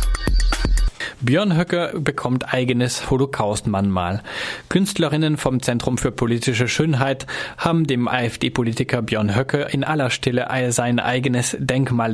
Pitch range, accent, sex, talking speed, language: 115-140 Hz, German, male, 110 wpm, German